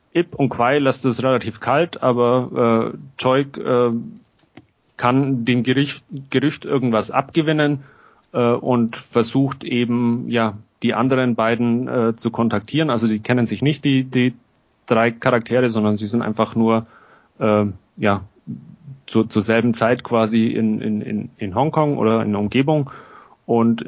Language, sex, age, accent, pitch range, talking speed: German, male, 30-49, German, 110-130 Hz, 150 wpm